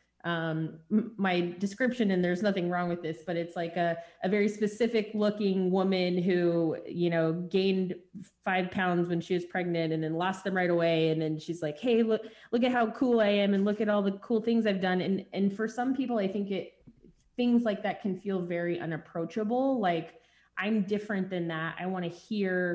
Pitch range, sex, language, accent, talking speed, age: 170-205 Hz, female, English, American, 210 wpm, 20-39